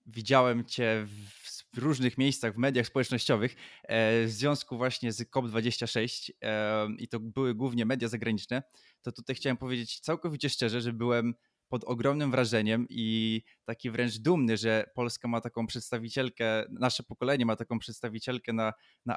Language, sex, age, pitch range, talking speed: Polish, male, 20-39, 115-130 Hz, 145 wpm